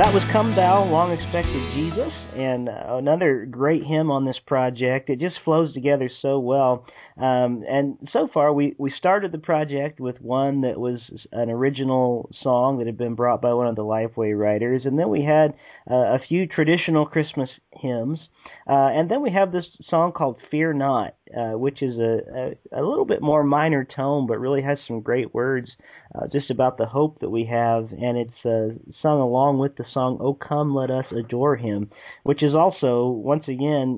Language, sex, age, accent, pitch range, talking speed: English, male, 40-59, American, 120-145 Hz, 195 wpm